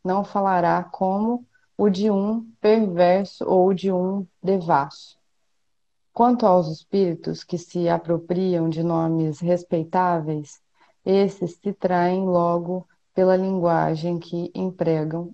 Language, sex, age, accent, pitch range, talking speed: Portuguese, female, 30-49, Brazilian, 170-195 Hz, 110 wpm